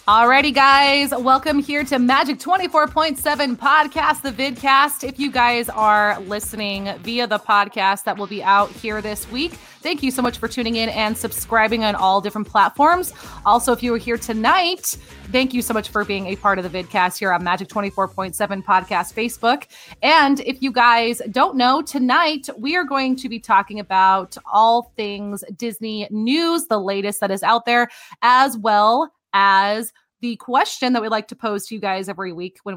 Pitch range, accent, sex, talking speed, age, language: 205-270 Hz, American, female, 185 wpm, 30-49, English